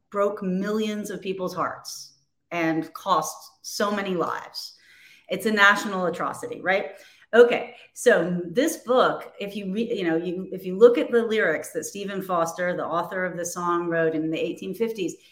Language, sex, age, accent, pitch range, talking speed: English, female, 30-49, American, 175-235 Hz, 170 wpm